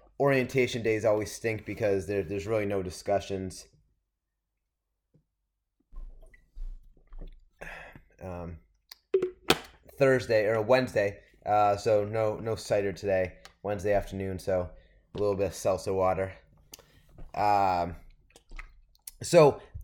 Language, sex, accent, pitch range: English, male, American, 100-130 Hz